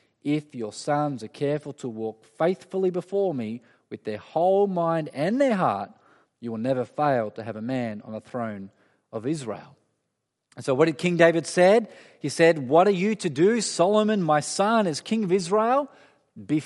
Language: English